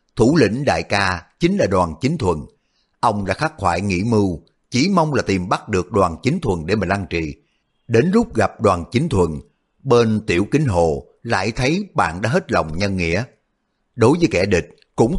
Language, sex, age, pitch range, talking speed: Vietnamese, male, 60-79, 90-130 Hz, 200 wpm